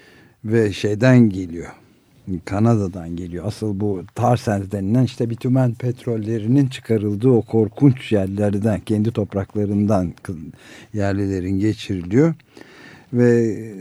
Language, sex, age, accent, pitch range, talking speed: Turkish, male, 60-79, native, 100-130 Hz, 90 wpm